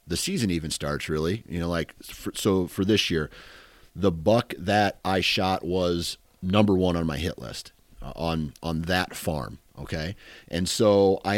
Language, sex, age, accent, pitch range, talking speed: English, male, 40-59, American, 80-100 Hz, 175 wpm